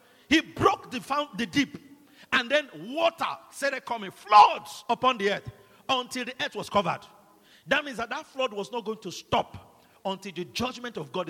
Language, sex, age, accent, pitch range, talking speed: English, male, 50-69, Nigerian, 210-275 Hz, 185 wpm